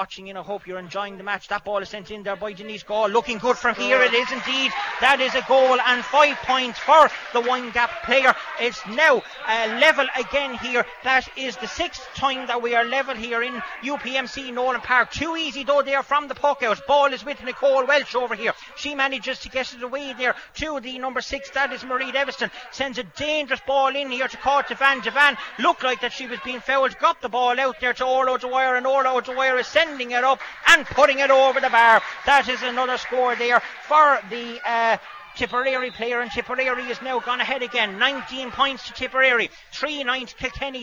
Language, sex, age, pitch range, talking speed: English, male, 30-49, 245-275 Hz, 215 wpm